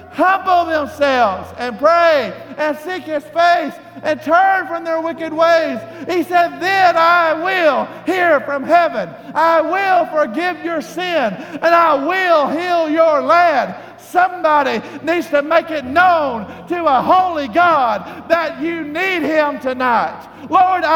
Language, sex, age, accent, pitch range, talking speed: English, male, 50-69, American, 290-350 Hz, 140 wpm